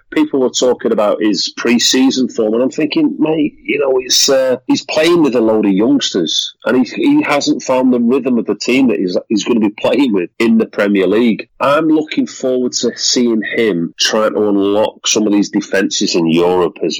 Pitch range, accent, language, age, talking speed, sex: 100-155 Hz, British, English, 30-49, 210 wpm, male